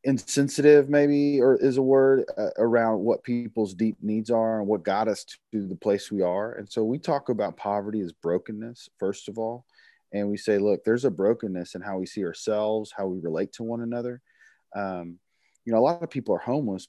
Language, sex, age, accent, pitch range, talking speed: English, male, 30-49, American, 95-110 Hz, 215 wpm